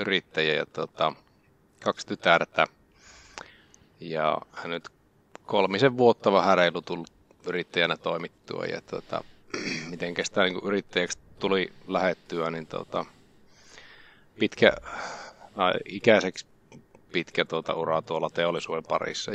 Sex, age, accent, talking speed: male, 30-49, native, 95 wpm